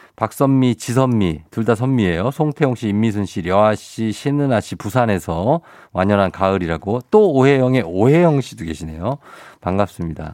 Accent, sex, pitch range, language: native, male, 100-150 Hz, Korean